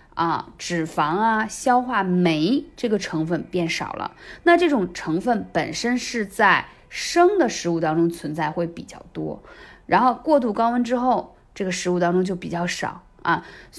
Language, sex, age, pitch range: Chinese, female, 20-39, 175-240 Hz